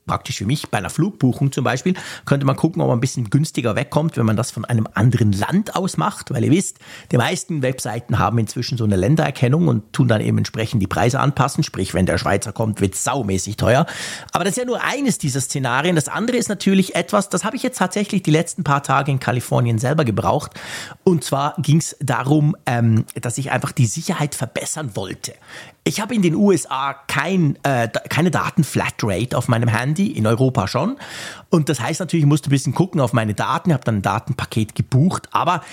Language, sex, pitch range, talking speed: German, male, 120-165 Hz, 210 wpm